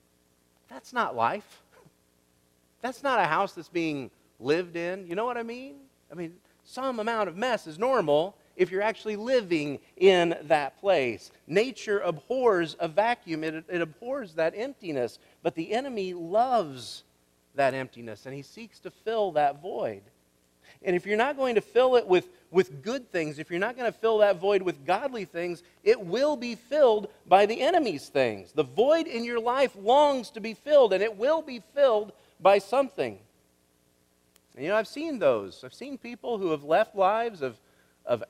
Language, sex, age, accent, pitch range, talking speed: English, male, 40-59, American, 155-230 Hz, 180 wpm